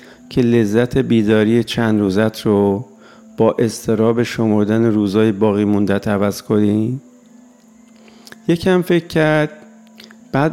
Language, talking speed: Persian, 105 wpm